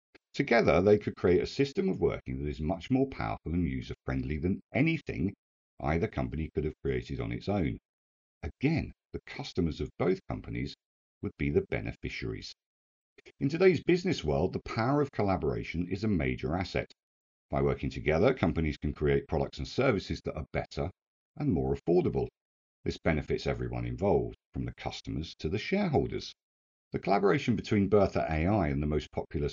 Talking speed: 165 wpm